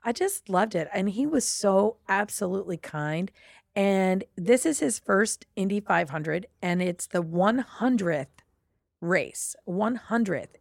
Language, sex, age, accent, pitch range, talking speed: English, female, 40-59, American, 175-230 Hz, 130 wpm